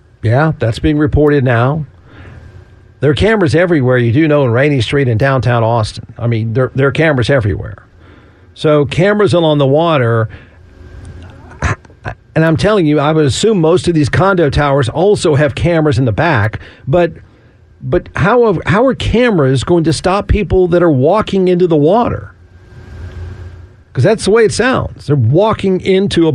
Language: English